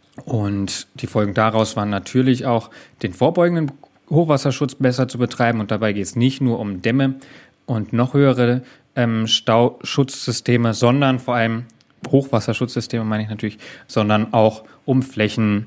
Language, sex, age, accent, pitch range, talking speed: German, male, 30-49, German, 115-135 Hz, 140 wpm